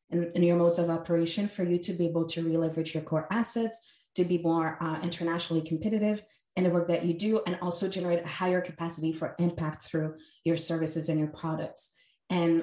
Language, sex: English, female